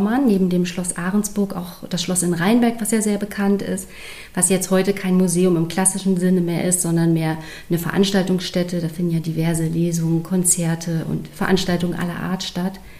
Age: 30-49